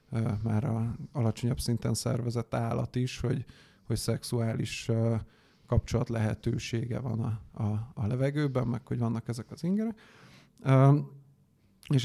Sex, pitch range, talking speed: male, 110-125 Hz, 135 wpm